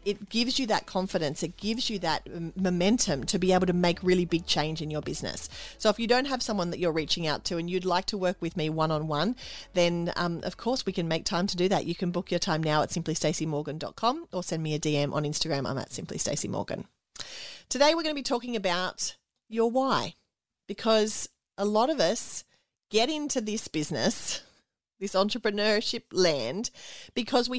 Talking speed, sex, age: 205 wpm, female, 40-59